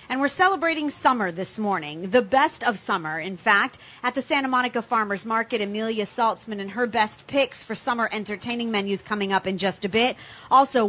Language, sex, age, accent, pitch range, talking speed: English, female, 30-49, American, 220-275 Hz, 195 wpm